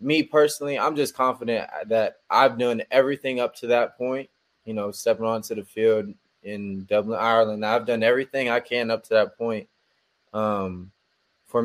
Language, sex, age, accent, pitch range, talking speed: English, male, 20-39, American, 105-120 Hz, 170 wpm